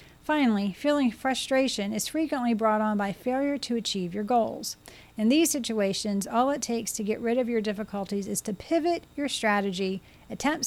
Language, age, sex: English, 40-59, female